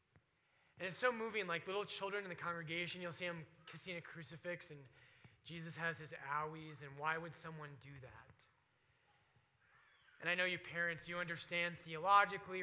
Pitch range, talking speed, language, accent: 155-200 Hz, 165 wpm, English, American